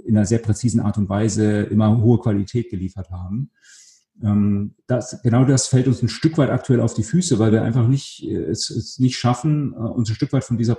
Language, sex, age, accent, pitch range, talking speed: German, male, 40-59, German, 110-130 Hz, 210 wpm